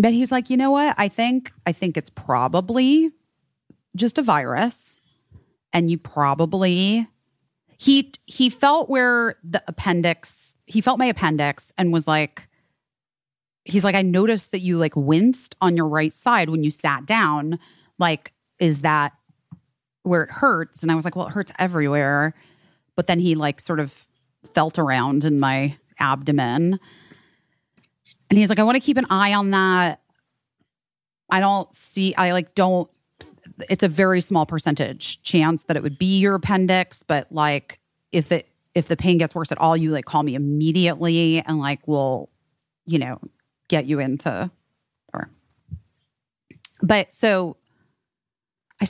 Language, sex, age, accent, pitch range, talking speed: English, female, 30-49, American, 155-205 Hz, 155 wpm